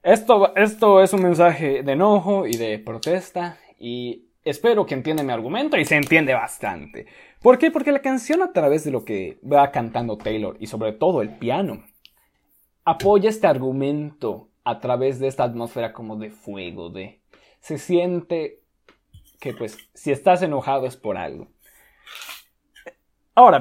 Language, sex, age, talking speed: Spanish, male, 20-39, 155 wpm